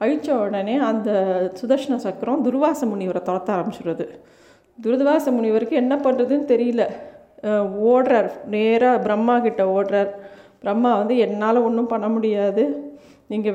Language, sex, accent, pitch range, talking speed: Tamil, female, native, 205-250 Hz, 115 wpm